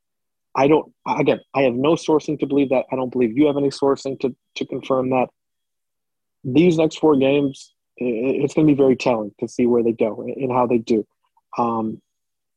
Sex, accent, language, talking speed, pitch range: male, American, English, 195 wpm, 125-150 Hz